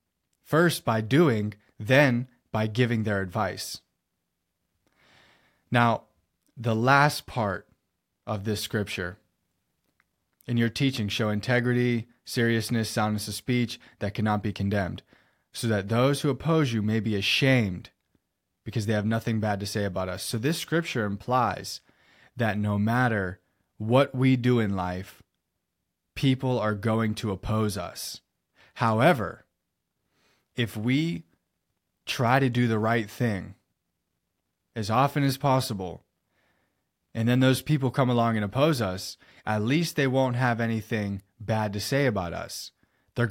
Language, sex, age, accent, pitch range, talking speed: English, male, 20-39, American, 105-130 Hz, 135 wpm